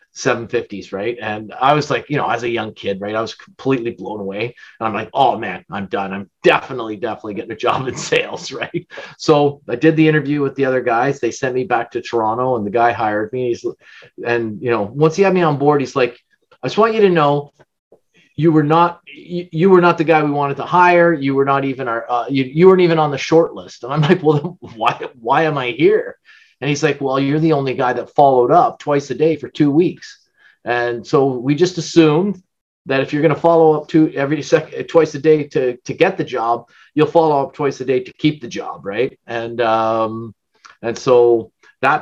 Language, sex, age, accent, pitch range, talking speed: English, male, 30-49, American, 120-160 Hz, 235 wpm